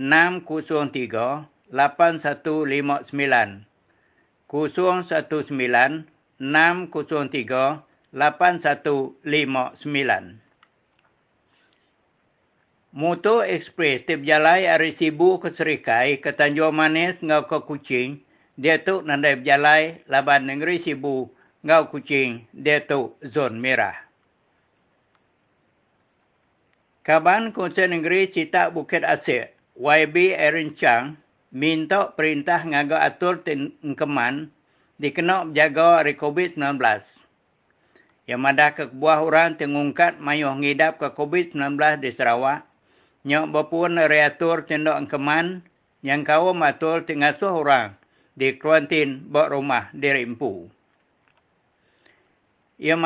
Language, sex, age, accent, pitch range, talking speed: English, male, 60-79, Indonesian, 140-165 Hz, 85 wpm